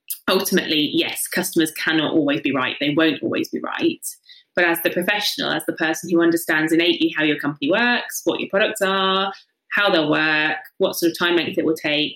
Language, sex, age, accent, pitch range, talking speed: English, female, 20-39, British, 160-195 Hz, 200 wpm